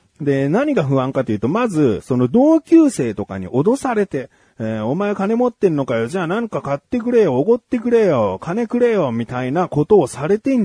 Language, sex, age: Japanese, male, 30-49